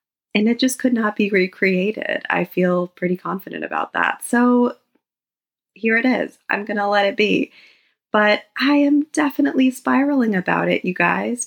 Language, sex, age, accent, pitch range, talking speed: English, female, 30-49, American, 195-270 Hz, 170 wpm